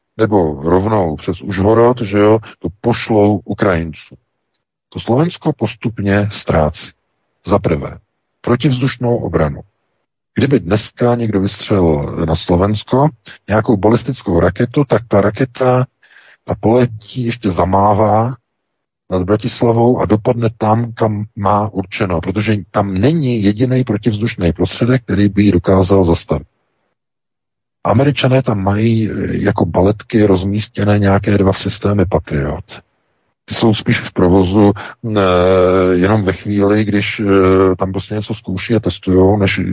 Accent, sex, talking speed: native, male, 115 wpm